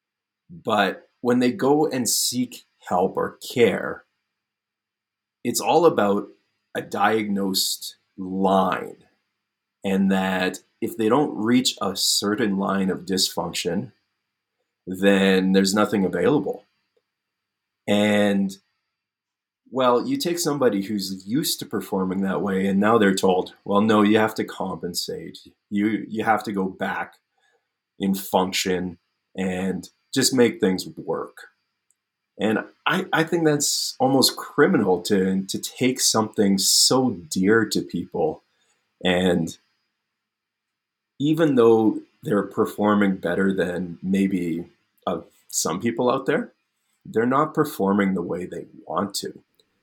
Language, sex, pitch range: English, male, 95-110 Hz